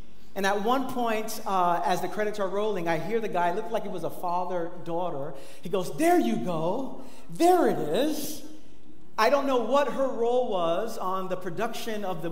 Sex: male